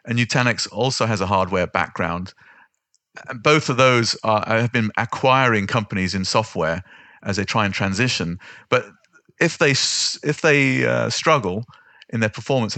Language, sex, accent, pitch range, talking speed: English, male, British, 95-120 Hz, 150 wpm